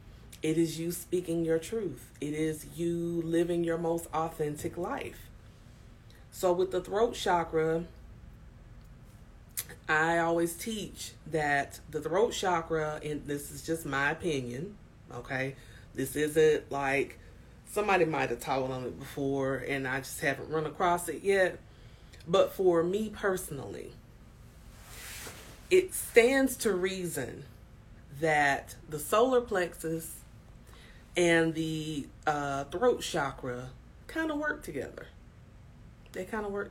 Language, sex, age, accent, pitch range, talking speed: English, female, 30-49, American, 130-175 Hz, 125 wpm